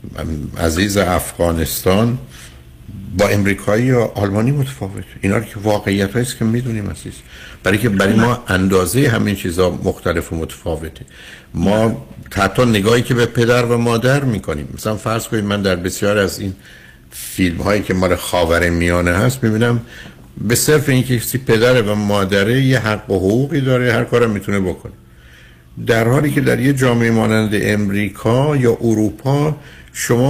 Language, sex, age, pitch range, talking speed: Persian, male, 60-79, 90-120 Hz, 150 wpm